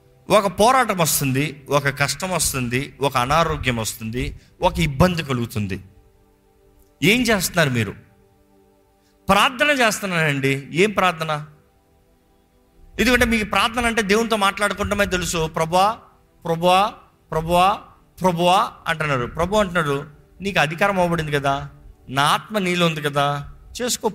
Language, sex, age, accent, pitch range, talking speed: Telugu, male, 50-69, native, 130-200 Hz, 105 wpm